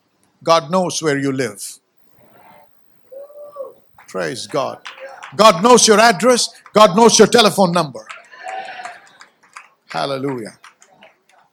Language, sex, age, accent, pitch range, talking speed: English, male, 60-79, Indian, 185-235 Hz, 90 wpm